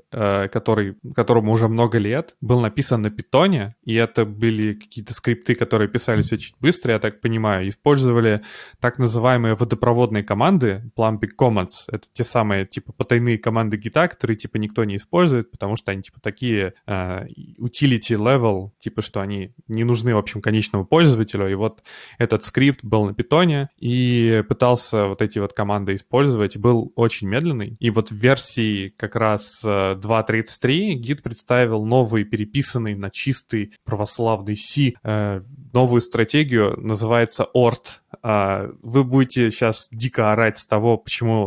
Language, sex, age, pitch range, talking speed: Russian, male, 20-39, 105-125 Hz, 150 wpm